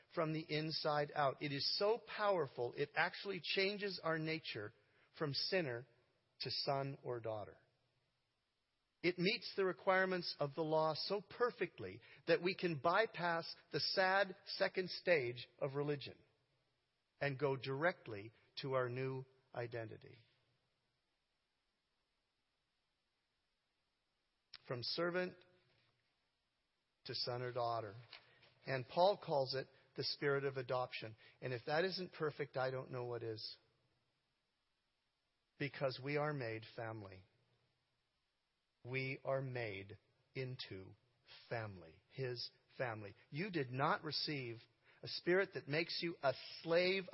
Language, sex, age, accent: English, male, 50-69, American